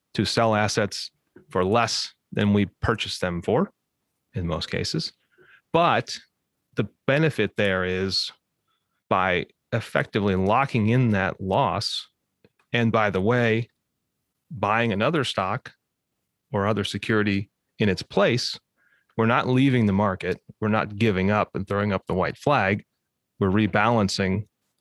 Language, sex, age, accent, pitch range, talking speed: English, male, 30-49, American, 100-120 Hz, 130 wpm